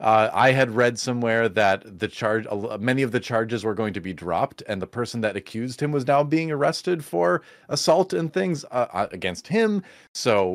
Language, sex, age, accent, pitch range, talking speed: English, male, 30-49, American, 100-130 Hz, 200 wpm